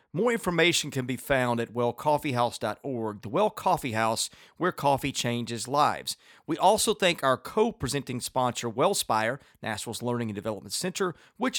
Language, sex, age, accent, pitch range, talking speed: English, male, 40-59, American, 115-155 Hz, 145 wpm